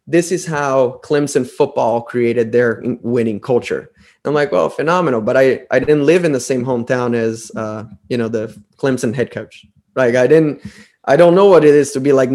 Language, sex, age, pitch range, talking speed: English, male, 20-39, 125-165 Hz, 205 wpm